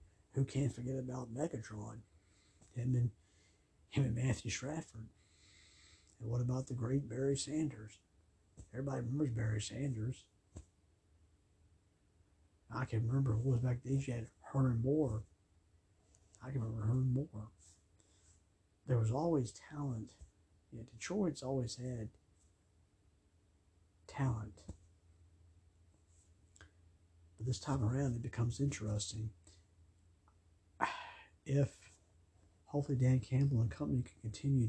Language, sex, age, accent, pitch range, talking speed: English, male, 60-79, American, 90-125 Hz, 105 wpm